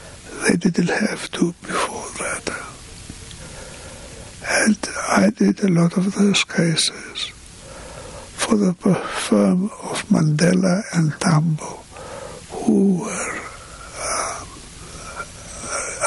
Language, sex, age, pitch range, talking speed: English, male, 60-79, 175-215 Hz, 90 wpm